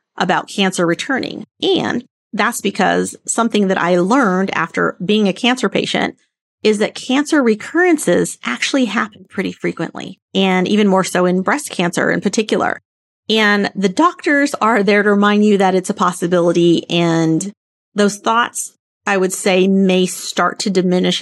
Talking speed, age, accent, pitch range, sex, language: 155 wpm, 30-49, American, 180-220 Hz, female, English